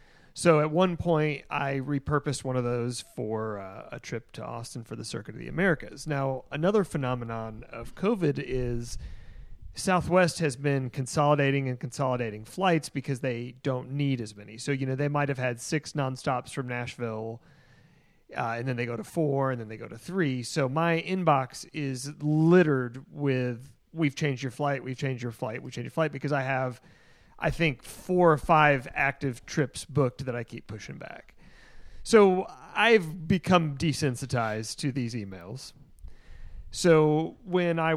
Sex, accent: male, American